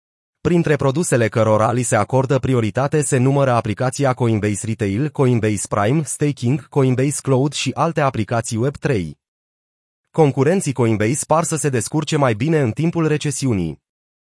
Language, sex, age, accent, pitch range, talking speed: Romanian, male, 30-49, native, 115-155 Hz, 135 wpm